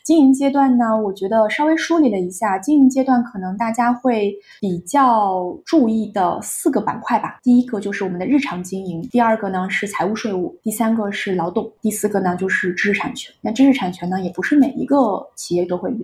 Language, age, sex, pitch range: Chinese, 20-39, female, 185-235 Hz